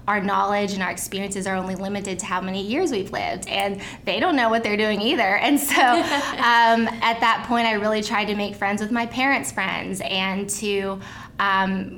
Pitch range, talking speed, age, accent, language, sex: 185-205 Hz, 205 wpm, 20-39, American, English, female